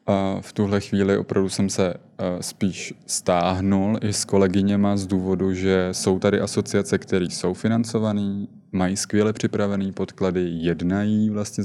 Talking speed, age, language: 140 wpm, 20-39, Czech